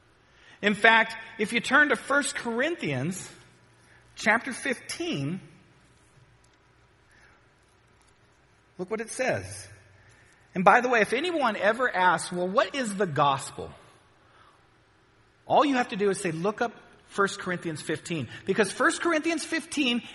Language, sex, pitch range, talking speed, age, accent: English, male, 180-275 Hz, 130 wpm, 40-59, American